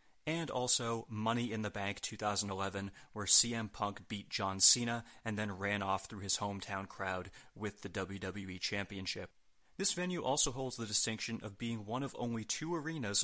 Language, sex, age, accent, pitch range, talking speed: English, male, 30-49, American, 100-125 Hz, 170 wpm